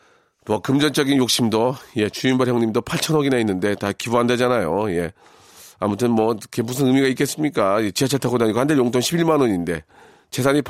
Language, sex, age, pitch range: Korean, male, 40-59, 110-155 Hz